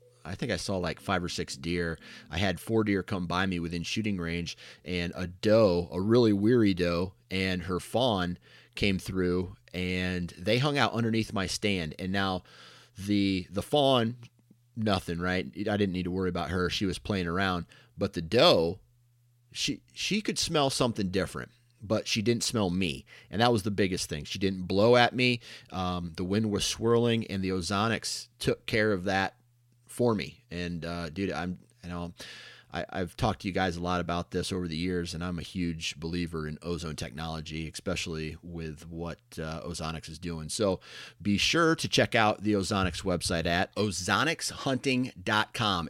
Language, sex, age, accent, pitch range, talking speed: English, male, 30-49, American, 85-115 Hz, 185 wpm